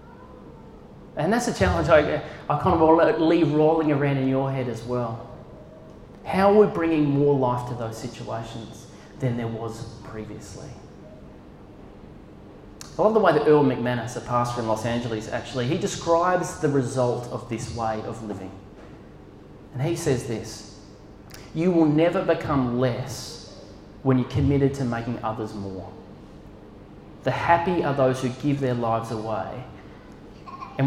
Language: English